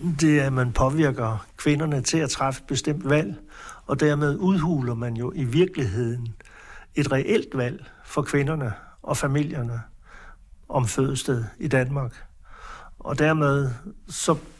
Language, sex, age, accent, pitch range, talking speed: Danish, male, 60-79, native, 130-155 Hz, 135 wpm